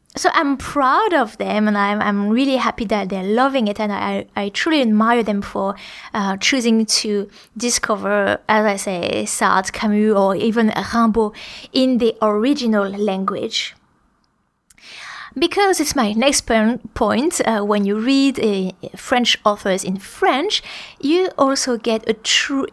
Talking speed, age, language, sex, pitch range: 150 wpm, 20-39, English, female, 205-265 Hz